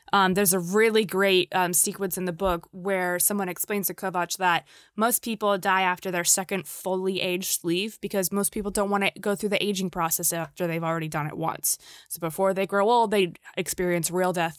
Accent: American